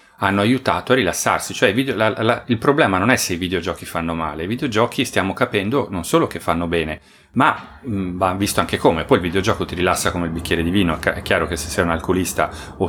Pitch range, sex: 85-105 Hz, male